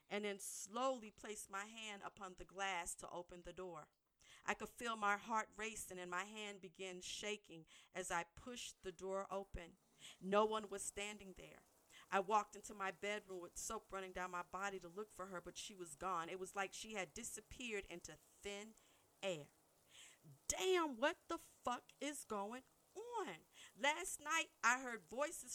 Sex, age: female, 50-69